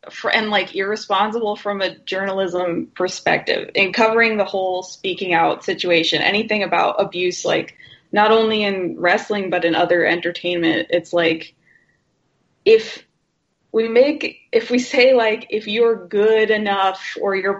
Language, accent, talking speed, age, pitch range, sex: English, American, 140 wpm, 20-39, 190-245 Hz, female